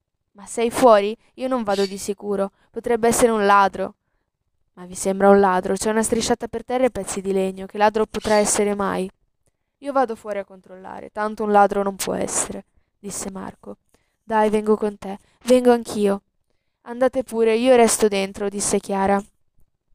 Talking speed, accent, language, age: 170 wpm, native, Italian, 10-29